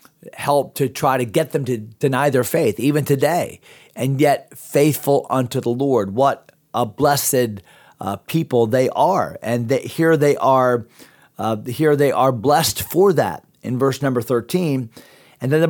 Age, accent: 40-59, American